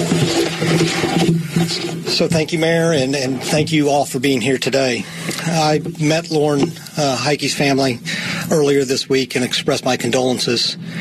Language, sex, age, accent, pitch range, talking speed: English, male, 40-59, American, 135-165 Hz, 140 wpm